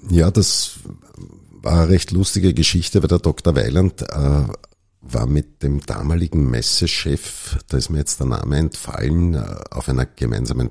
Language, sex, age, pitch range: German, male, 50-69, 65-85 Hz